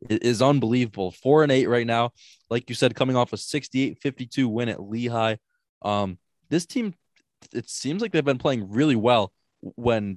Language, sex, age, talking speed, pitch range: English, male, 20-39, 175 wpm, 110-135 Hz